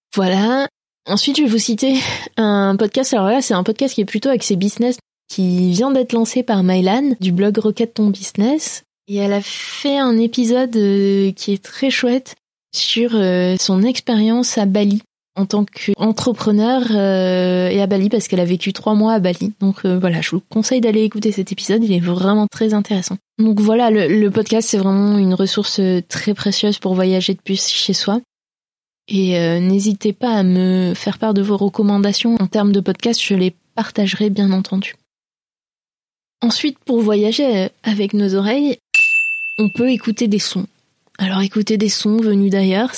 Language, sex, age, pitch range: French, female, 20-39, 195-230 Hz